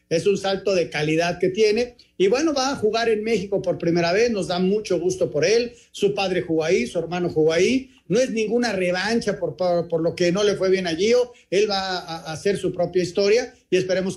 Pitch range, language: 185-255 Hz, Spanish